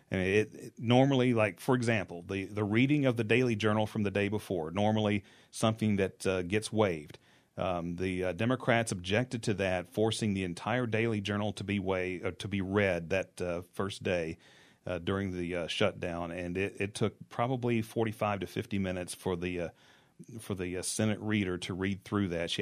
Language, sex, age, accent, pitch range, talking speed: English, male, 40-59, American, 95-110 Hz, 195 wpm